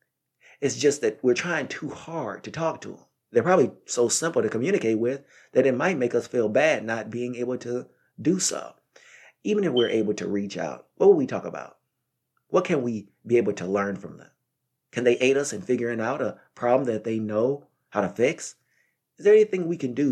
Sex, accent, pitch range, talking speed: male, American, 105-135 Hz, 220 wpm